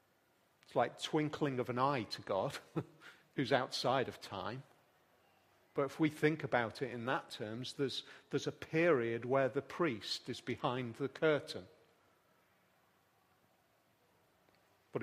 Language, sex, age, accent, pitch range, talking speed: English, male, 40-59, British, 130-185 Hz, 130 wpm